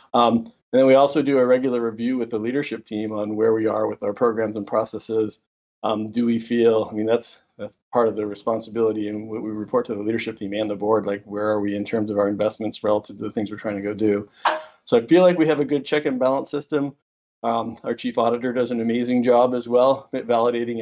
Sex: male